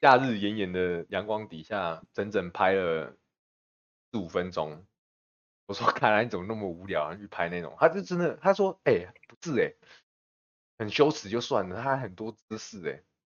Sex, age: male, 20-39